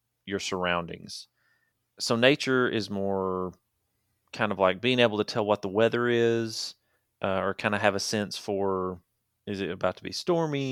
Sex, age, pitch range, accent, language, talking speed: male, 30-49, 95-120 Hz, American, English, 175 wpm